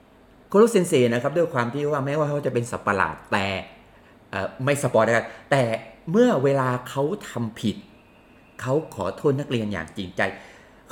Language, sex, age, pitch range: Thai, male, 30-49, 120-160 Hz